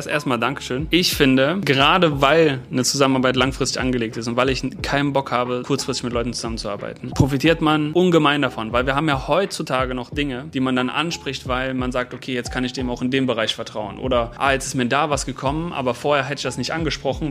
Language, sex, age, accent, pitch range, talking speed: German, male, 30-49, German, 125-150 Hz, 220 wpm